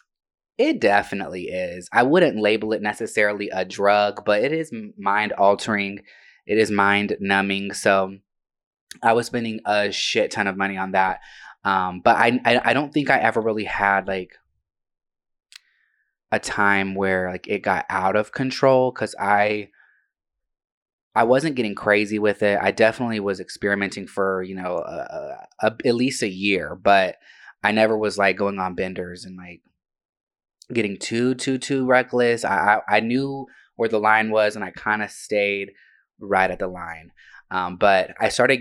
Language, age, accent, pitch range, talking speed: English, 20-39, American, 95-115 Hz, 170 wpm